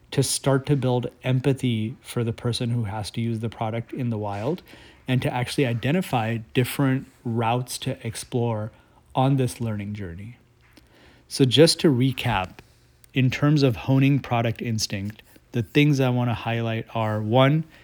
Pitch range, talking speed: 115-135 Hz, 155 wpm